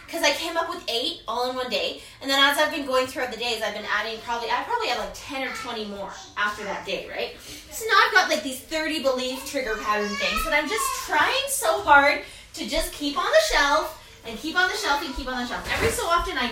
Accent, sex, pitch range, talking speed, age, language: American, female, 255-375 Hz, 260 wpm, 20-39, English